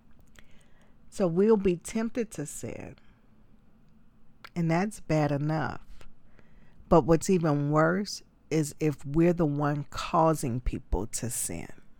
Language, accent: English, American